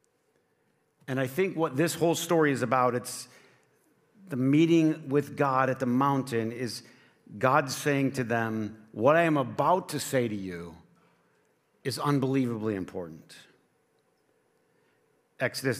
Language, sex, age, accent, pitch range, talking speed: English, male, 50-69, American, 115-145 Hz, 130 wpm